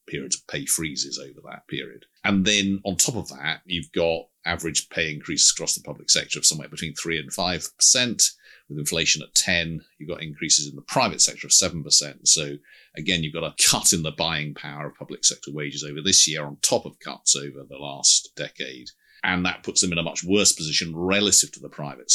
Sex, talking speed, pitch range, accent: male, 215 wpm, 75-95 Hz, British